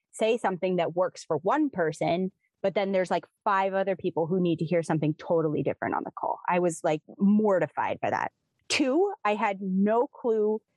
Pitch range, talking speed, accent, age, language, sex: 165-235 Hz, 195 wpm, American, 20-39, English, female